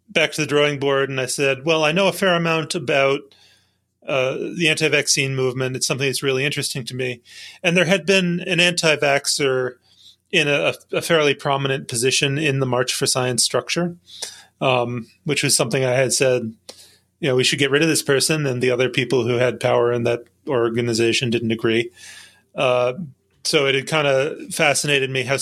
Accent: American